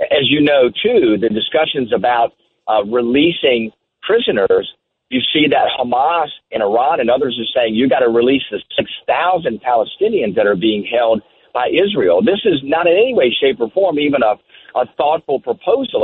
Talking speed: 175 wpm